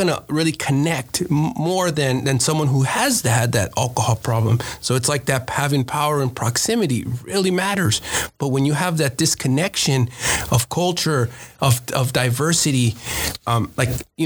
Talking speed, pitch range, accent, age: 160 wpm, 120-150 Hz, American, 30-49